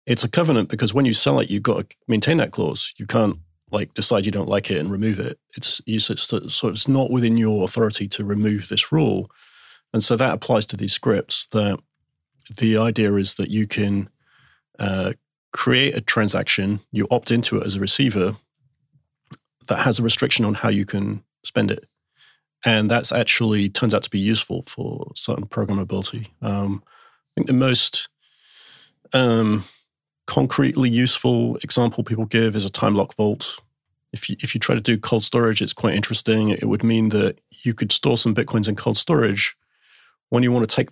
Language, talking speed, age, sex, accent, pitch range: English, 190 wpm, 30-49, male, British, 100-120 Hz